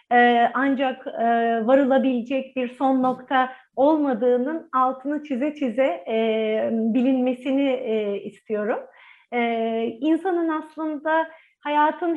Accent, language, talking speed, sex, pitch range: native, Turkish, 70 wpm, female, 240-290 Hz